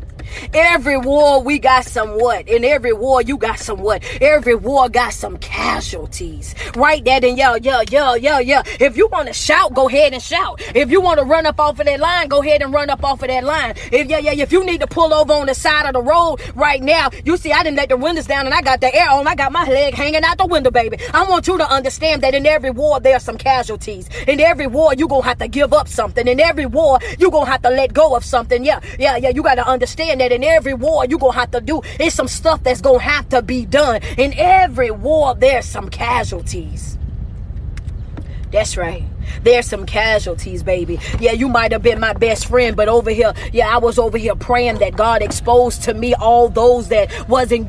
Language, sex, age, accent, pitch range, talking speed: English, female, 20-39, American, 255-310 Hz, 240 wpm